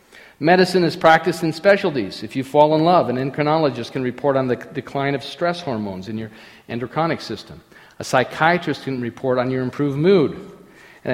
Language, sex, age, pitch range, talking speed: English, male, 50-69, 115-155 Hz, 180 wpm